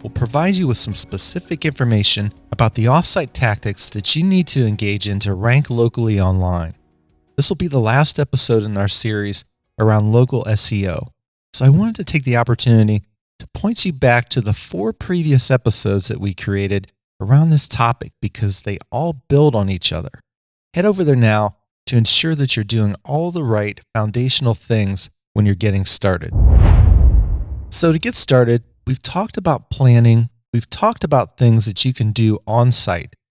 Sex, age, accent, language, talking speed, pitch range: male, 30-49, American, English, 175 wpm, 105-135 Hz